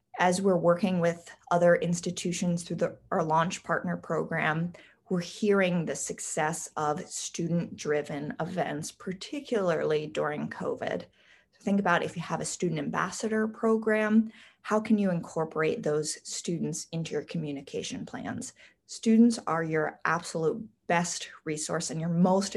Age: 20-39